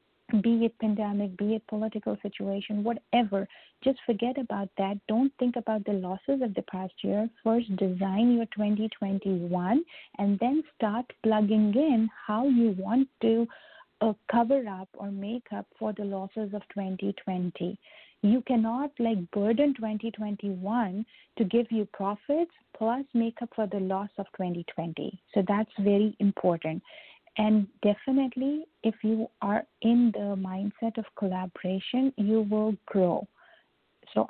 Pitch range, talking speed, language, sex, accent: 200-240 Hz, 140 wpm, English, female, Indian